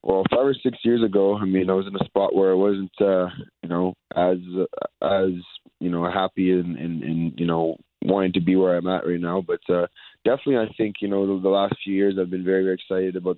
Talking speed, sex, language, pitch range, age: 240 wpm, male, English, 85-95 Hz, 20-39